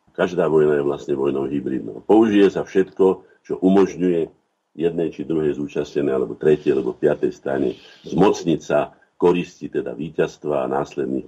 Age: 50-69